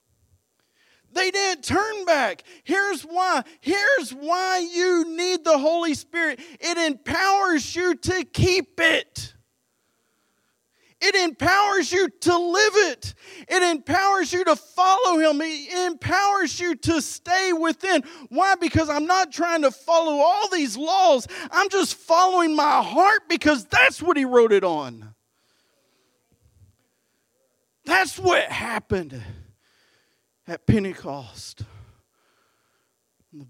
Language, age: English, 40-59